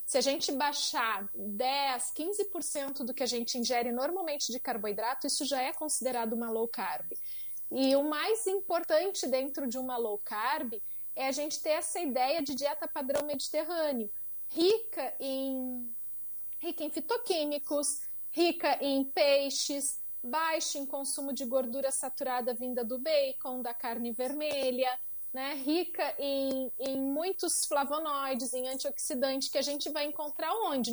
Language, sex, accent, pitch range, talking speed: Portuguese, female, Brazilian, 255-315 Hz, 140 wpm